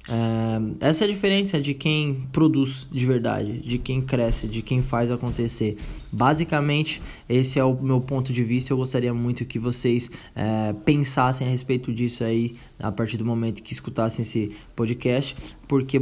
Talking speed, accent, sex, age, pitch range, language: 160 wpm, Brazilian, male, 20-39, 115-150 Hz, Portuguese